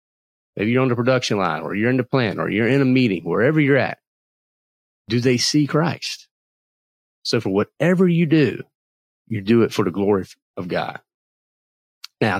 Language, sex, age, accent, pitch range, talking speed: English, male, 40-59, American, 105-150 Hz, 180 wpm